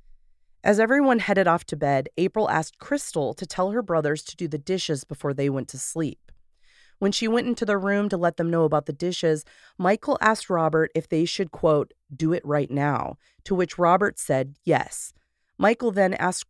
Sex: female